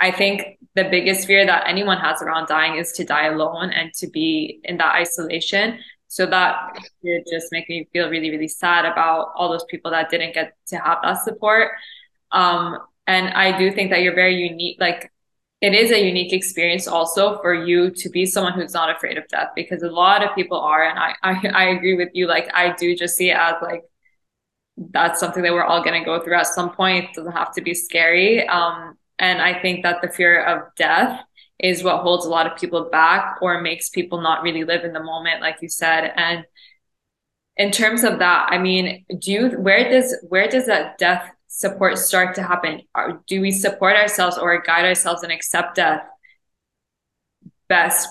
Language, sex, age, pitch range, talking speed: English, female, 20-39, 170-190 Hz, 200 wpm